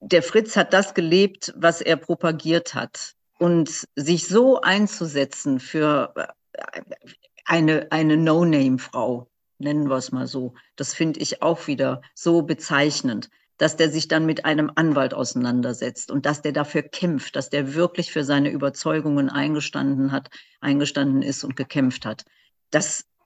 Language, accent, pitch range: German, German, 150-180 Hz